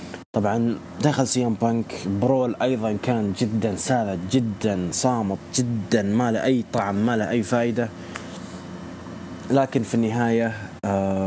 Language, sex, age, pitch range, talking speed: English, male, 20-39, 95-120 Hz, 120 wpm